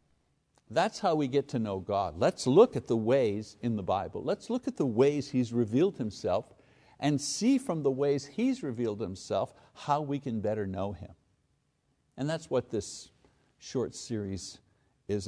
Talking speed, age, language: 175 wpm, 60-79, English